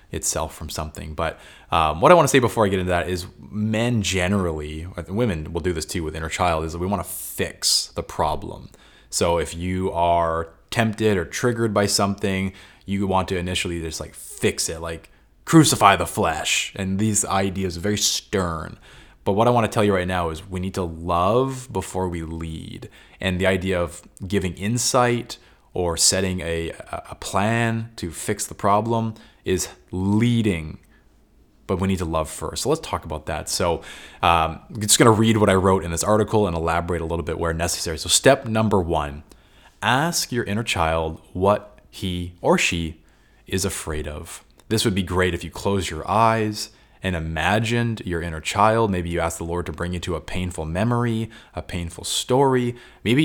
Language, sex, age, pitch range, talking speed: English, male, 20-39, 85-105 Hz, 195 wpm